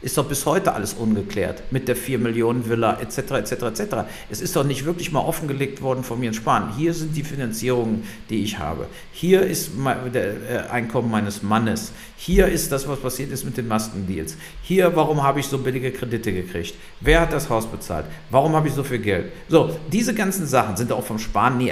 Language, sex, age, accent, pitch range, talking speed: German, male, 50-69, German, 115-160 Hz, 205 wpm